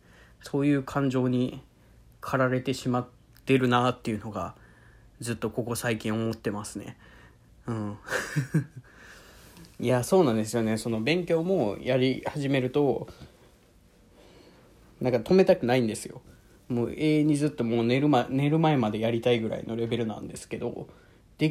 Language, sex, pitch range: Japanese, male, 110-140 Hz